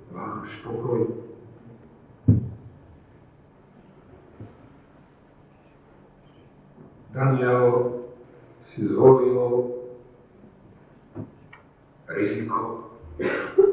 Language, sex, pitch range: Slovak, male, 115-145 Hz